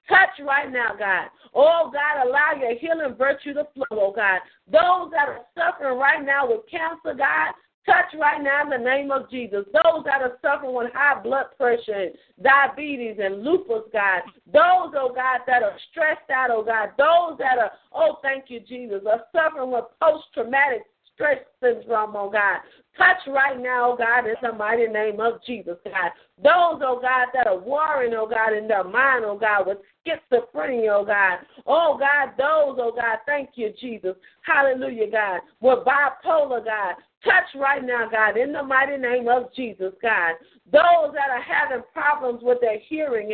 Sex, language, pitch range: female, English, 230-295 Hz